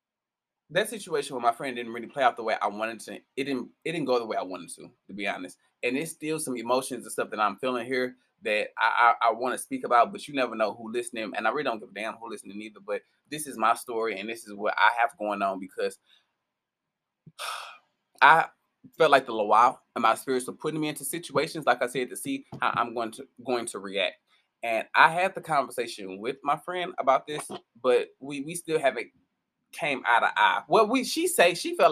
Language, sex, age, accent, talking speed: English, male, 20-39, American, 240 wpm